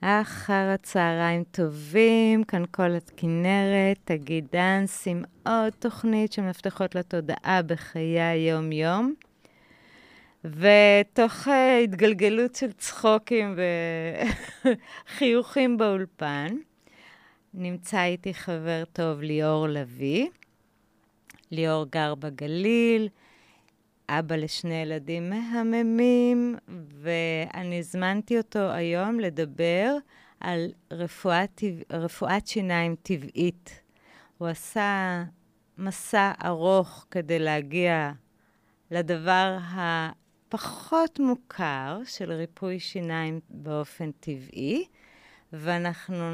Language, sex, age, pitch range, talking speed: Hebrew, female, 30-49, 165-210 Hz, 75 wpm